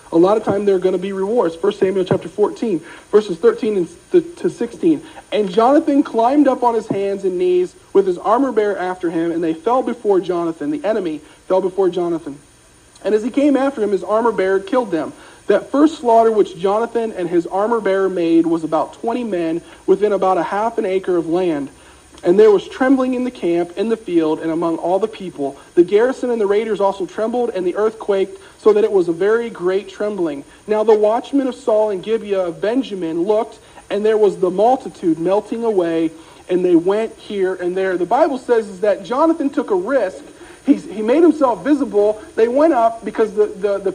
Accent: American